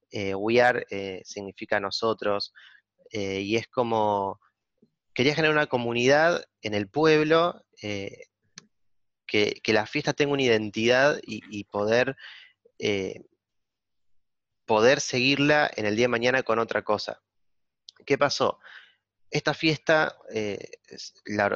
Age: 30-49